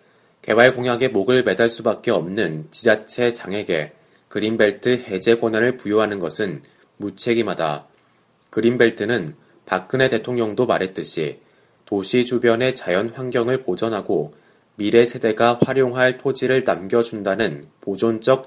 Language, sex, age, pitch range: Korean, male, 30-49, 105-125 Hz